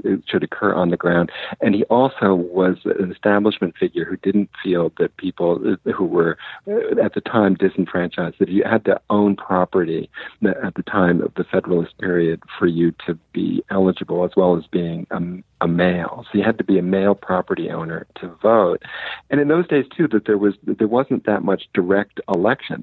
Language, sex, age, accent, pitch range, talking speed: English, male, 50-69, American, 90-110 Hz, 195 wpm